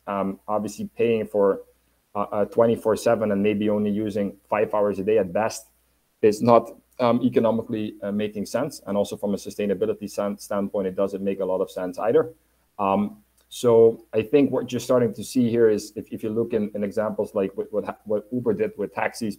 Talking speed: 205 wpm